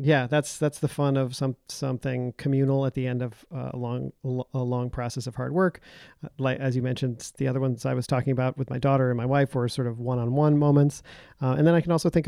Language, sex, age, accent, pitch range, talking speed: English, male, 40-59, American, 125-145 Hz, 260 wpm